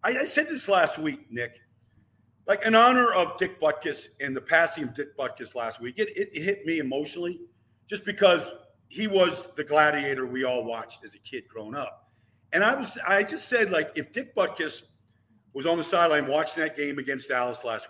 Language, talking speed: English, 200 wpm